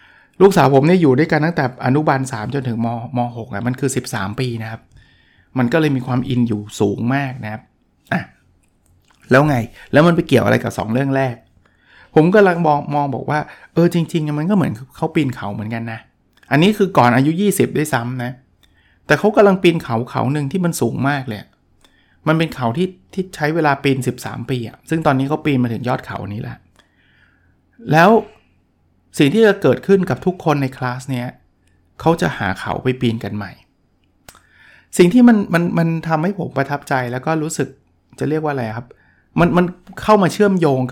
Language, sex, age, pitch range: Thai, male, 60-79, 115-155 Hz